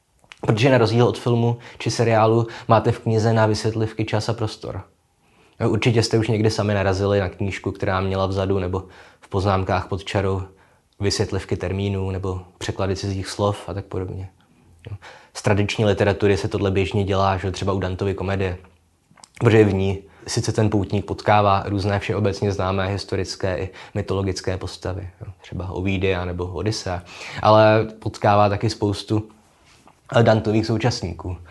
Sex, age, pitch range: male, 20-39, 95-110 Hz